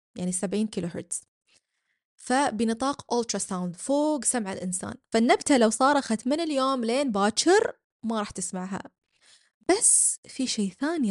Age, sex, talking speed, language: 20-39, female, 130 wpm, Arabic